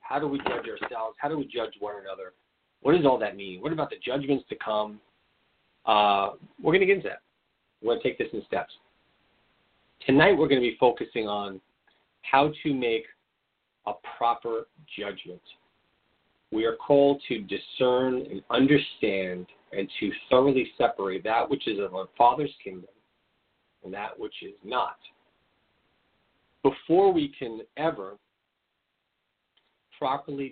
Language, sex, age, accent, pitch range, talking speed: English, male, 40-59, American, 100-135 Hz, 150 wpm